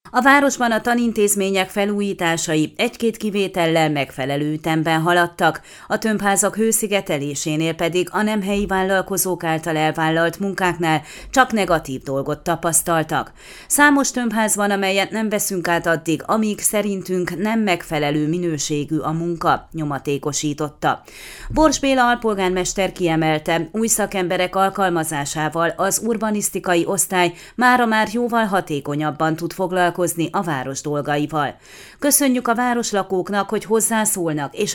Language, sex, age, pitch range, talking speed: Hungarian, female, 30-49, 165-215 Hz, 115 wpm